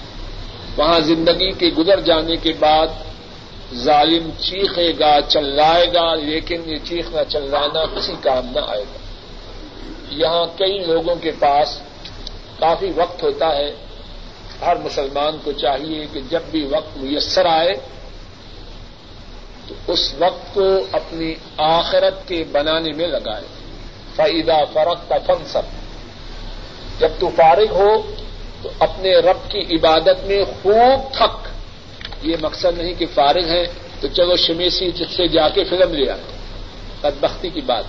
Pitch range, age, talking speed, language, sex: 145-185 Hz, 50-69, 130 wpm, Urdu, male